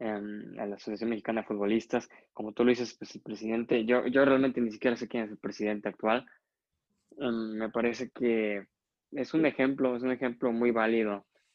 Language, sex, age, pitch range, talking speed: Spanish, male, 20-39, 110-125 Hz, 185 wpm